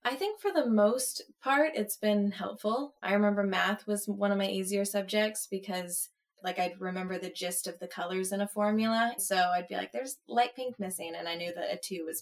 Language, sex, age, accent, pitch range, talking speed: English, female, 20-39, American, 180-215 Hz, 220 wpm